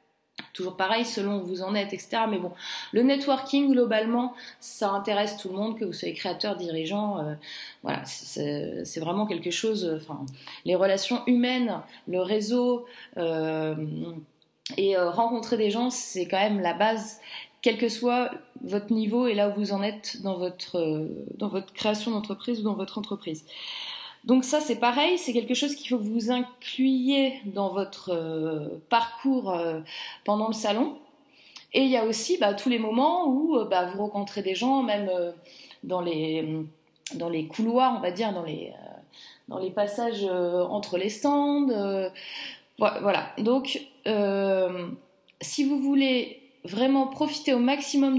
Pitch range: 190-250 Hz